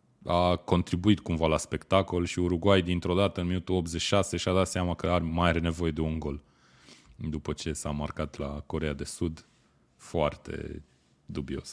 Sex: male